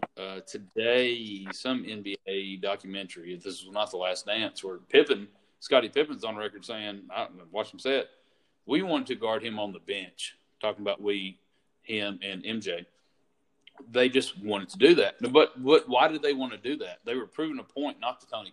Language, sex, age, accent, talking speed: English, male, 40-59, American, 200 wpm